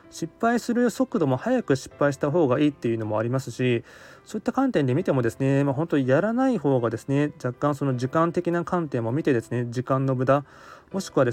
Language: Japanese